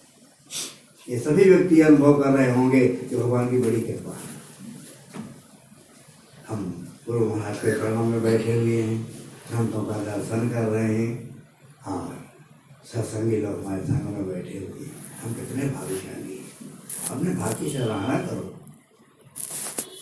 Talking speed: 110 wpm